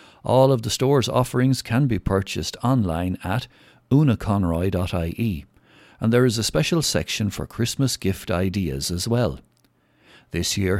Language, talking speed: English, 140 wpm